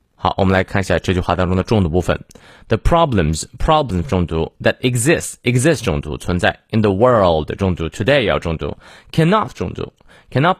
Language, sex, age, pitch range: Chinese, male, 20-39, 90-125 Hz